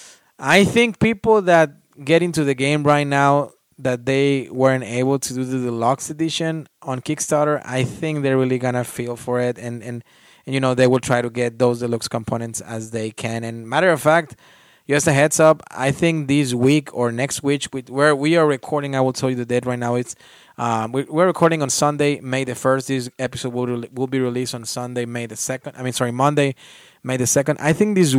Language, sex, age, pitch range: English, male, 20-39, 125-150 Hz